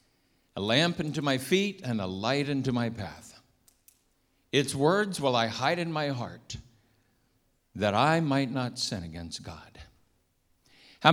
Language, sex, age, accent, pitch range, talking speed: English, male, 50-69, American, 115-155 Hz, 145 wpm